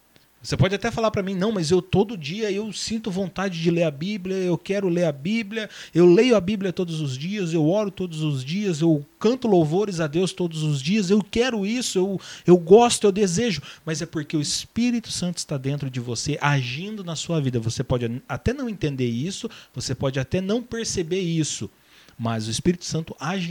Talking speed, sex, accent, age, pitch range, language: 210 wpm, male, Brazilian, 30-49, 150-205 Hz, Portuguese